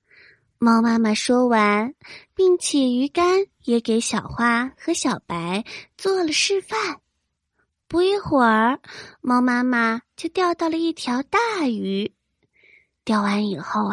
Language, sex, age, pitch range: Chinese, female, 20-39, 225-340 Hz